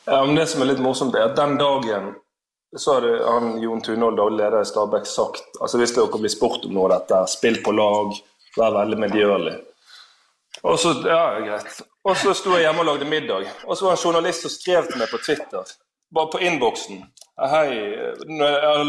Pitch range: 130-200 Hz